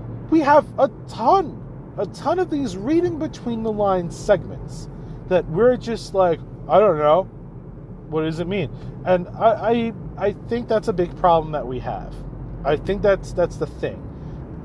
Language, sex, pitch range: English, male, 135-185 Hz